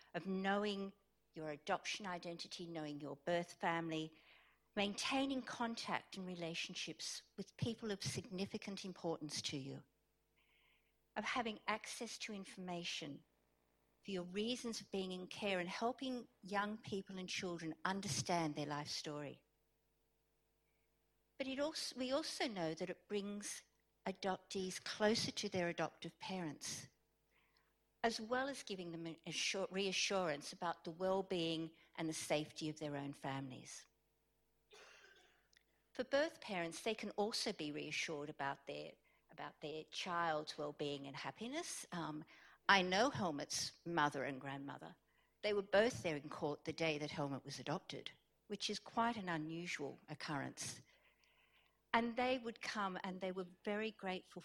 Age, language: 60-79, English